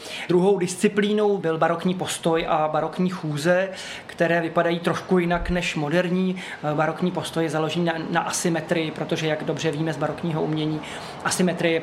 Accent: native